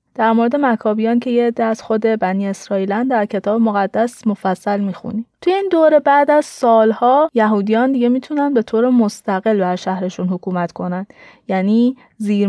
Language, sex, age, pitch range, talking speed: Persian, female, 30-49, 200-250 Hz, 155 wpm